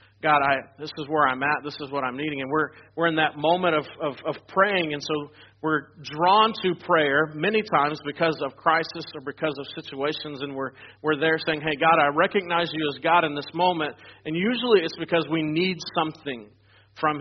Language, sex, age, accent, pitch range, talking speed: English, male, 40-59, American, 140-170 Hz, 210 wpm